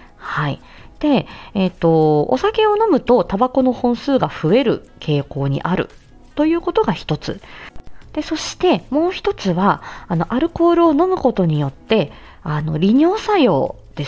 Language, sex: Japanese, female